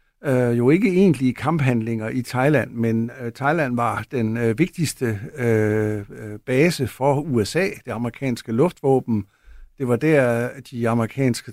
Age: 60-79